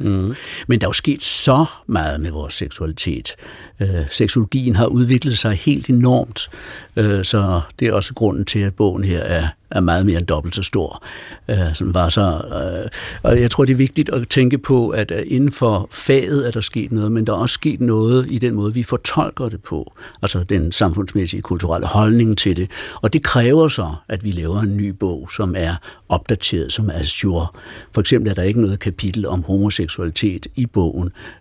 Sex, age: male, 60-79